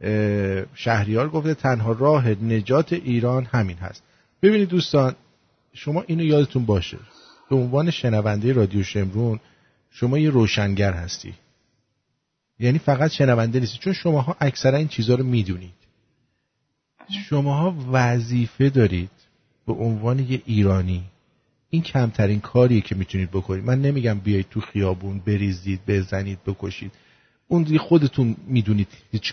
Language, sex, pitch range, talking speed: English, male, 105-140 Hz, 125 wpm